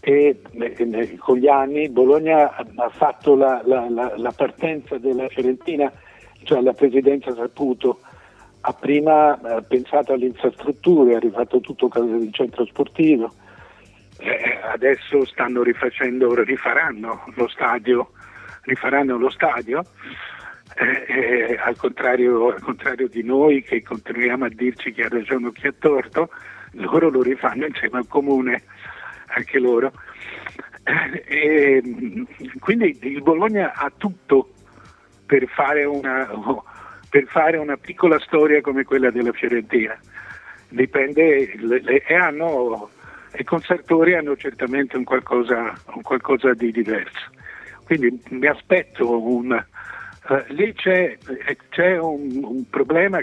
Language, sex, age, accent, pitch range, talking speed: Italian, male, 50-69, native, 125-155 Hz, 125 wpm